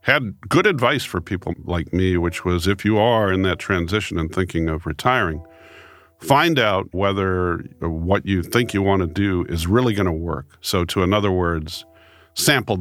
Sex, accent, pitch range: male, American, 85-100 Hz